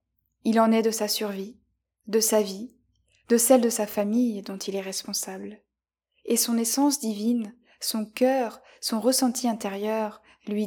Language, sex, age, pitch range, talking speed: French, female, 20-39, 205-235 Hz, 155 wpm